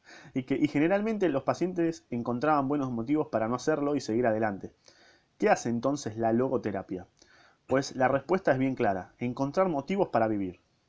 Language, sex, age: Spanish, male, 30-49